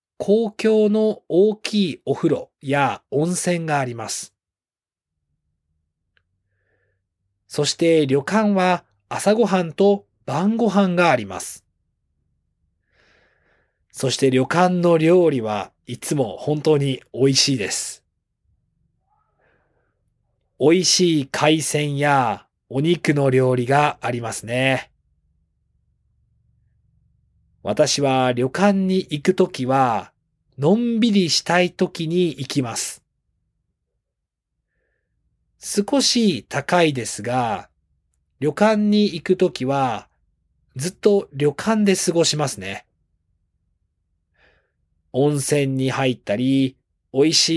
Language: Japanese